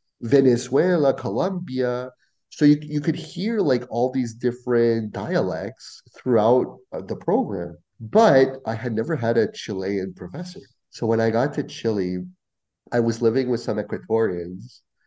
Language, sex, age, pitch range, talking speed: English, male, 30-49, 100-130 Hz, 140 wpm